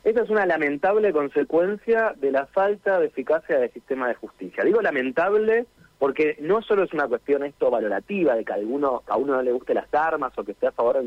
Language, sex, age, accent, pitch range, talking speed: Spanish, male, 40-59, Argentinian, 140-205 Hz, 215 wpm